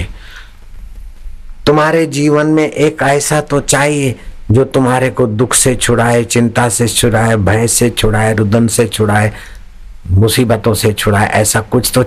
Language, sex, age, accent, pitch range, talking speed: Hindi, male, 60-79, native, 95-130 Hz, 140 wpm